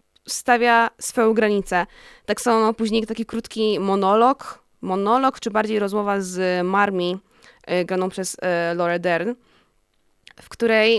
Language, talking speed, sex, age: Polish, 115 wpm, female, 20-39